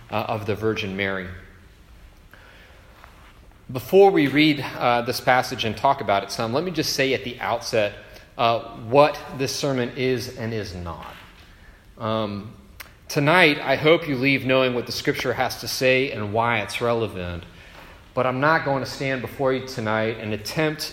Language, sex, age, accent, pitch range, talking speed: English, male, 30-49, American, 95-130 Hz, 170 wpm